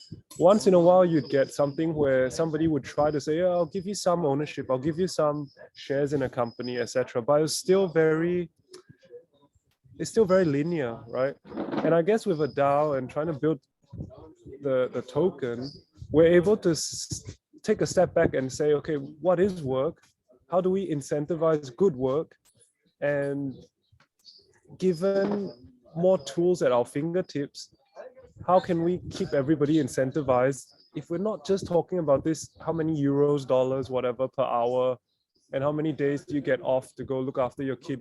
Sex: male